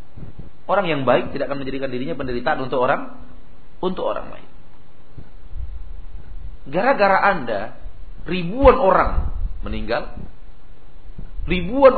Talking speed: 95 wpm